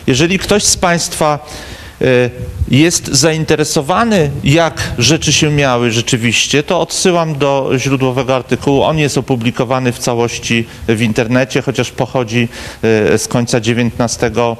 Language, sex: Polish, male